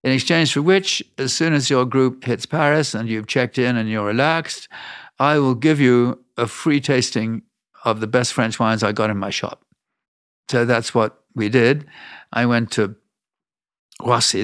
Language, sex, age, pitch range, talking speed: English, male, 50-69, 105-130 Hz, 185 wpm